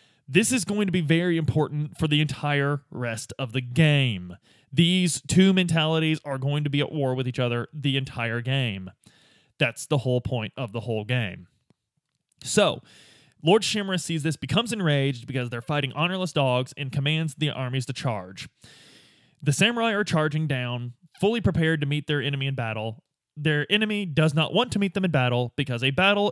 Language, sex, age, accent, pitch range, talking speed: English, male, 20-39, American, 130-160 Hz, 185 wpm